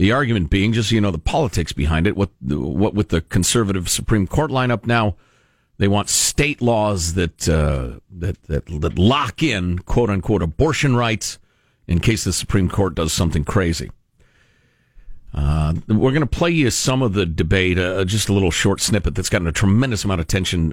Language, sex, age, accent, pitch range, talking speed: English, male, 50-69, American, 95-120 Hz, 190 wpm